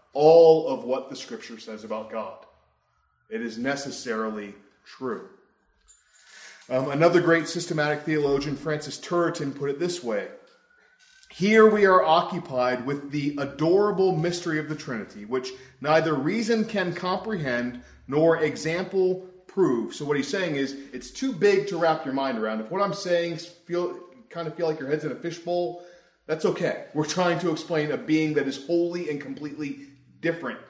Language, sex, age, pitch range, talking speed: English, male, 30-49, 135-175 Hz, 160 wpm